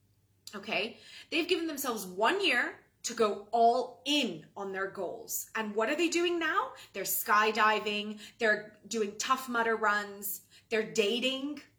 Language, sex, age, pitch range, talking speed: English, female, 20-39, 215-305 Hz, 145 wpm